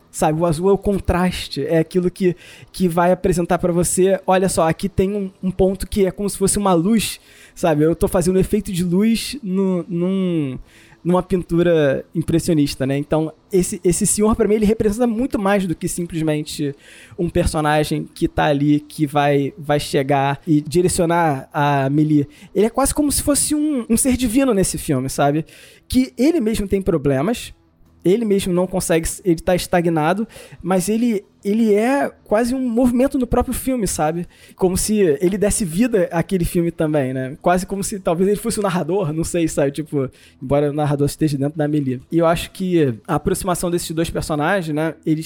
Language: Portuguese